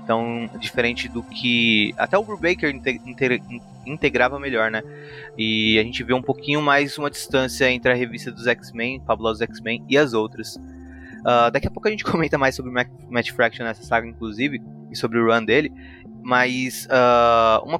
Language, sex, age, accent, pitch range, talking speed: Portuguese, male, 20-39, Brazilian, 115-150 Hz, 170 wpm